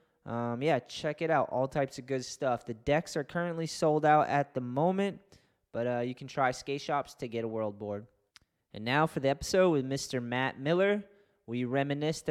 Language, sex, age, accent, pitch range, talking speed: English, male, 20-39, American, 130-155 Hz, 205 wpm